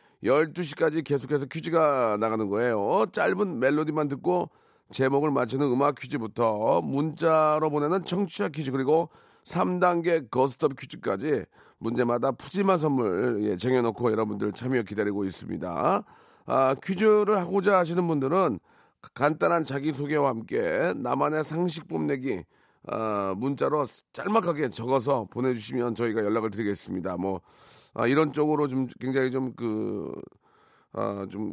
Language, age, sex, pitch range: Korean, 40-59, male, 115-155 Hz